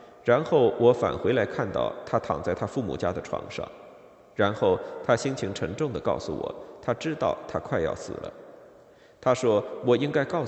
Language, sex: Chinese, male